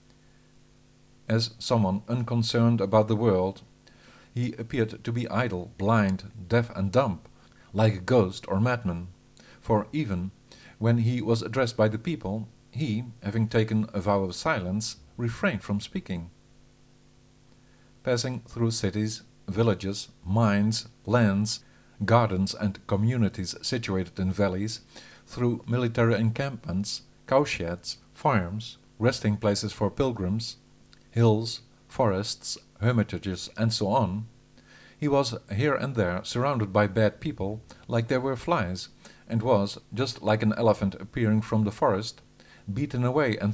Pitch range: 105-125 Hz